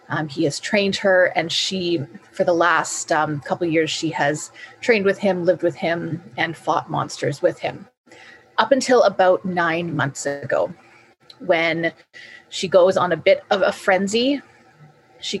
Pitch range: 165-205 Hz